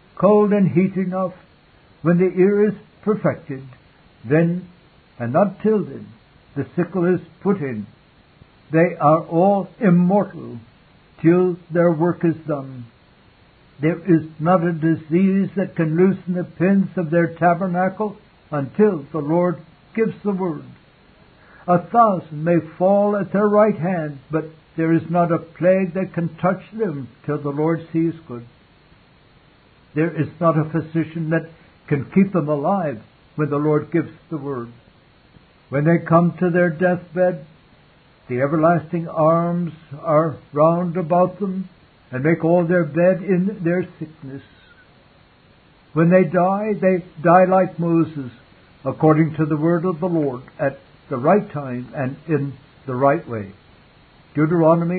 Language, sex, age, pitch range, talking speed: English, male, 60-79, 150-180 Hz, 140 wpm